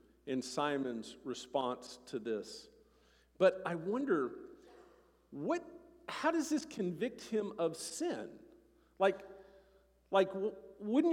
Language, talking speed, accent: English, 100 wpm, American